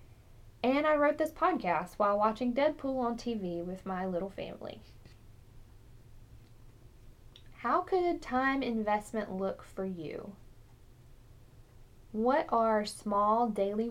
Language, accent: English, American